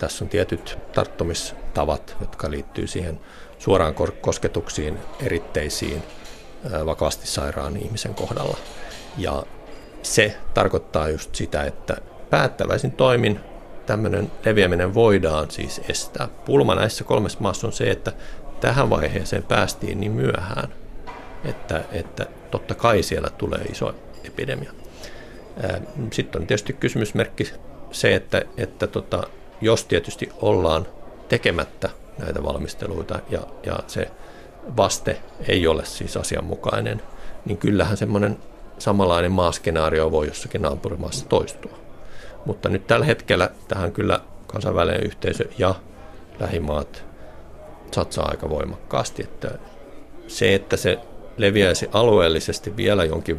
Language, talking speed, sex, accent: Finnish, 110 wpm, male, native